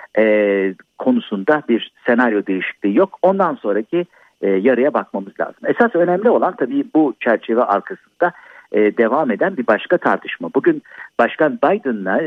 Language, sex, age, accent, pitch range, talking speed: Turkish, male, 50-69, native, 115-185 Hz, 135 wpm